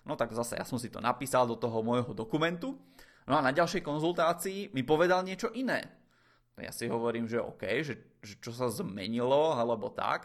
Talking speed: 195 wpm